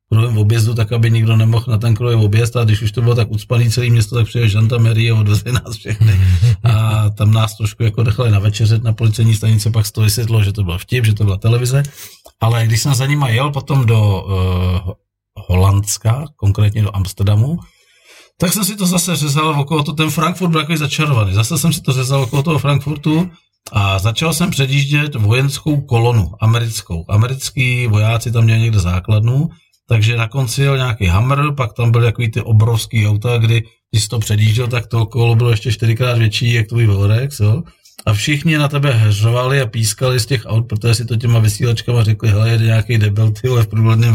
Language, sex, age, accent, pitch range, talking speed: Czech, male, 40-59, native, 110-140 Hz, 195 wpm